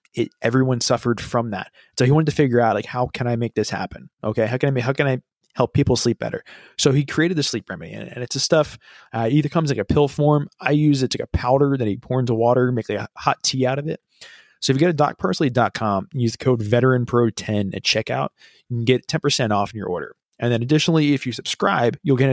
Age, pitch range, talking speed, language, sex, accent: 20-39, 115-140 Hz, 260 wpm, English, male, American